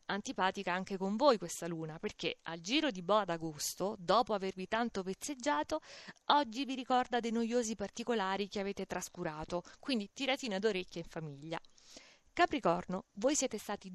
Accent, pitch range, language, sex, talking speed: native, 185-260 Hz, Italian, female, 145 wpm